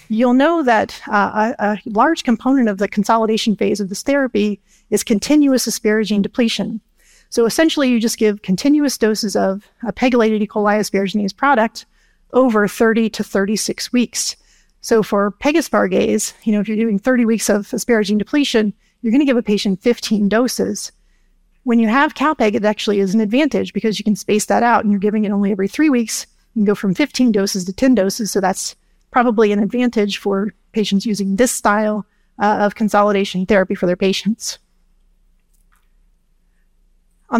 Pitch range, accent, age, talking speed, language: 205-240 Hz, American, 40-59, 175 wpm, English